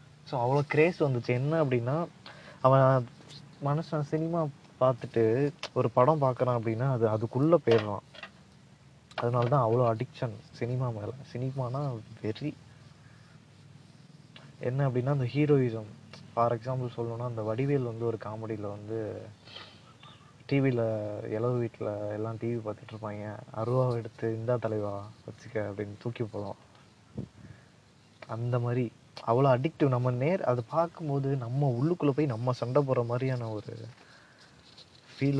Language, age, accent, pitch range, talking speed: Tamil, 20-39, native, 115-140 Hz, 120 wpm